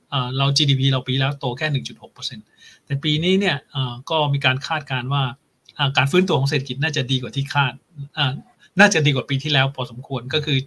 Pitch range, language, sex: 130-150 Hz, Thai, male